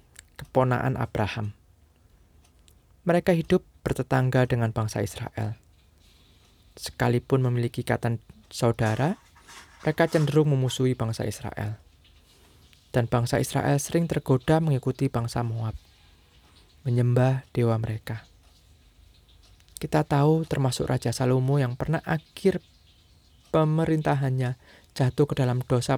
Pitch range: 95-145 Hz